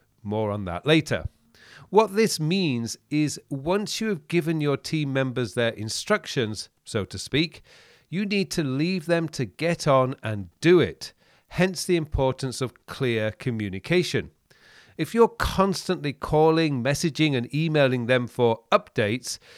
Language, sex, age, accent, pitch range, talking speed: English, male, 40-59, British, 120-170 Hz, 145 wpm